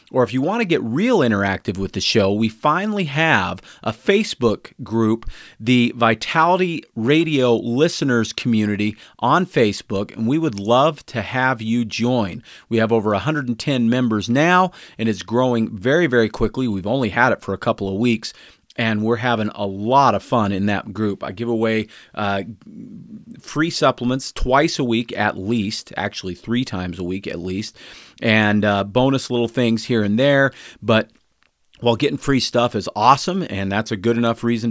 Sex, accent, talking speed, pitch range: male, American, 175 wpm, 105-125 Hz